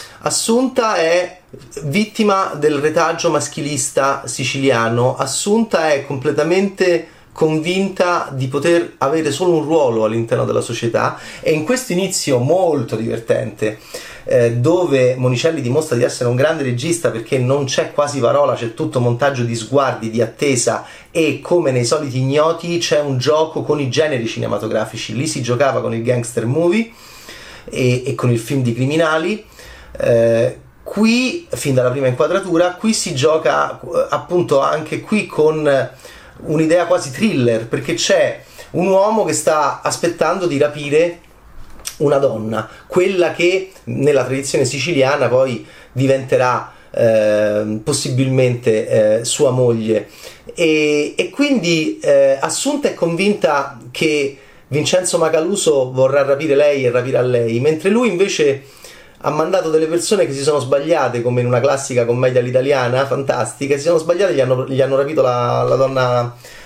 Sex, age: male, 30-49